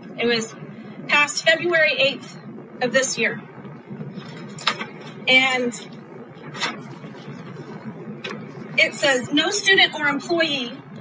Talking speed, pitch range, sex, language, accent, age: 80 wpm, 250-330 Hz, female, English, American, 40-59